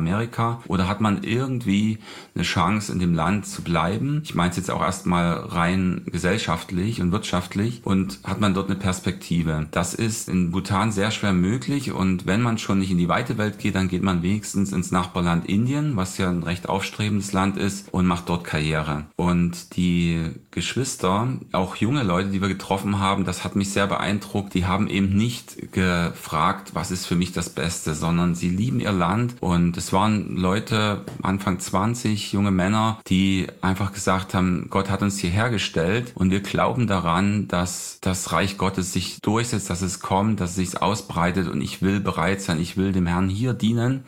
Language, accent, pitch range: German, German, 90-100 Hz